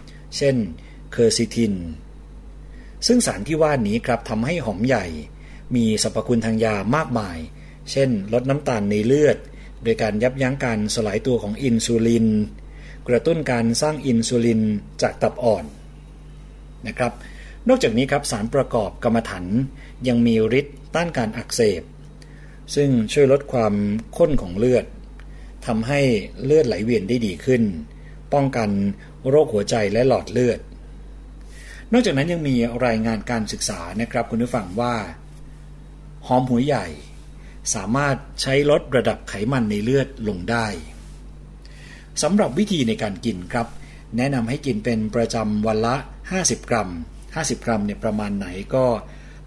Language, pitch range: Thai, 105-135 Hz